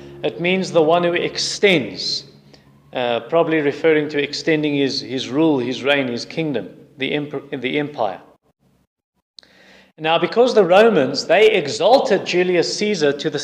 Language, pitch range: English, 150-185 Hz